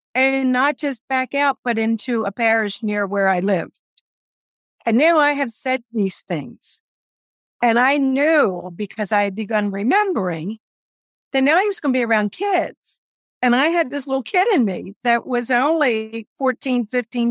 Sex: female